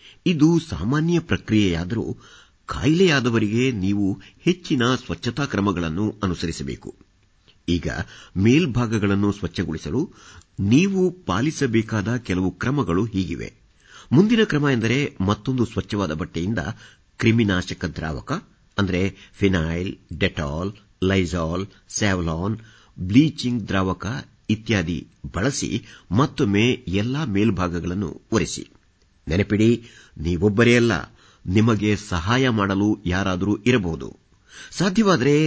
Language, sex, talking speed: Kannada, male, 80 wpm